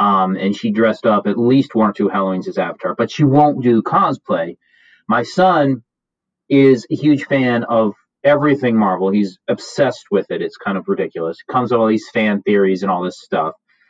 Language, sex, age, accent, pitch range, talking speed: English, male, 30-49, American, 115-150 Hz, 195 wpm